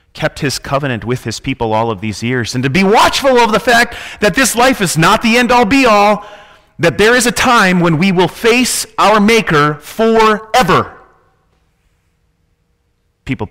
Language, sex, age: English, male, 30-49